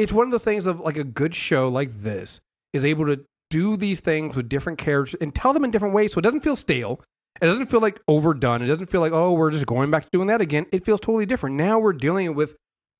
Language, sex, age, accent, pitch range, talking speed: English, male, 30-49, American, 135-175 Hz, 270 wpm